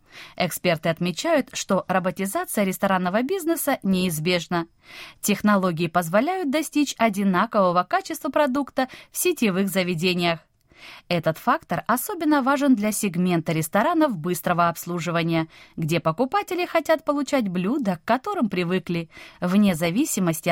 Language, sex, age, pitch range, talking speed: Russian, female, 20-39, 170-275 Hz, 100 wpm